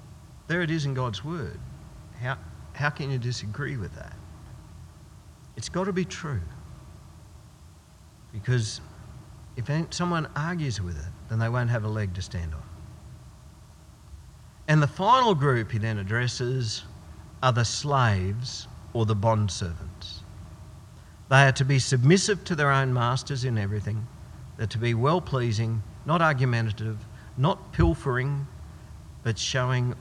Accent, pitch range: Australian, 95-130 Hz